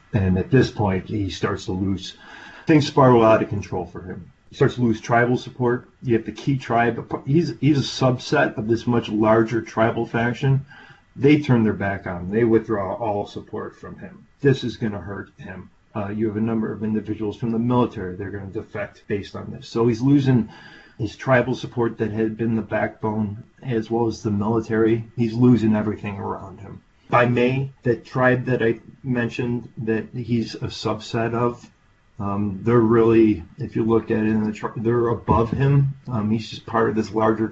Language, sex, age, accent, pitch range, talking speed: English, male, 40-59, American, 105-120 Hz, 205 wpm